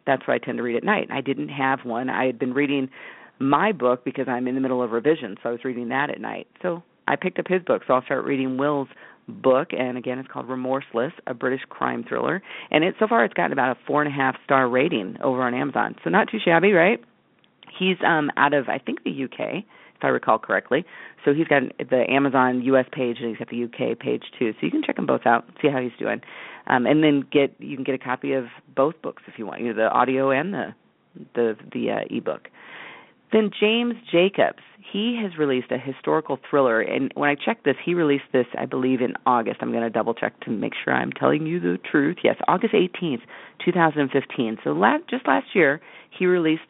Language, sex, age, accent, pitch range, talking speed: English, female, 40-59, American, 125-155 Hz, 230 wpm